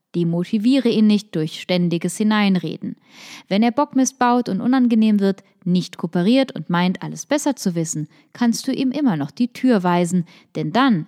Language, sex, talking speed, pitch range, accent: German, female, 170 wpm, 180-240 Hz, German